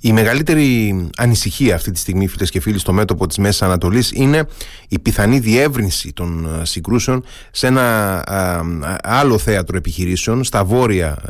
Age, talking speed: 30-49, 145 wpm